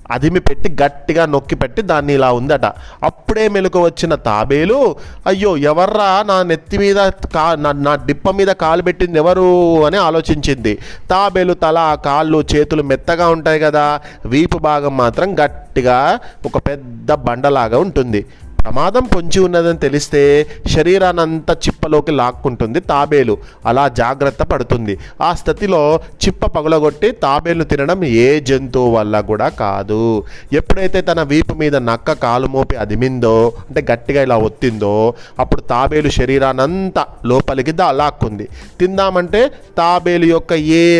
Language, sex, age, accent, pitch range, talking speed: Telugu, male, 30-49, native, 130-170 Hz, 115 wpm